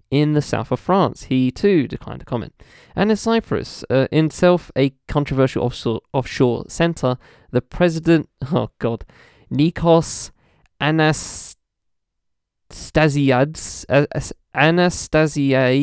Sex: male